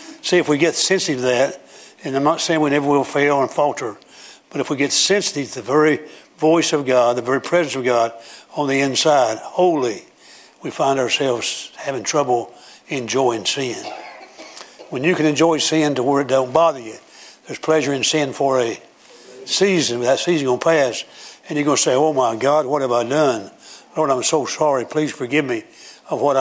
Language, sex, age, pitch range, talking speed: English, male, 60-79, 130-155 Hz, 200 wpm